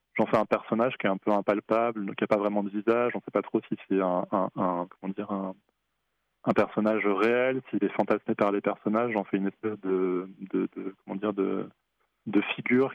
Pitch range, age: 100-115 Hz, 20-39